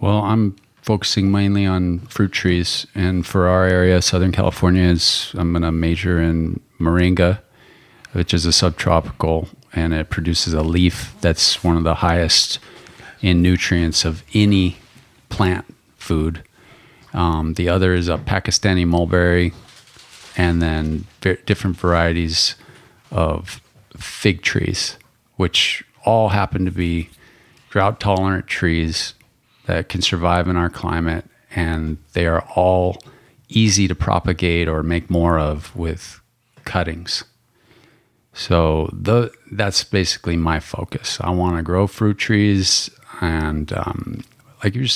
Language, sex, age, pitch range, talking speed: English, male, 40-59, 85-105 Hz, 125 wpm